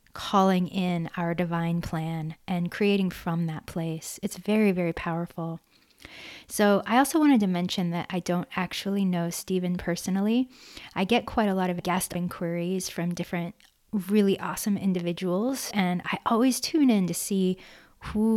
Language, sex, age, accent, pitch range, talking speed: English, female, 20-39, American, 175-205 Hz, 155 wpm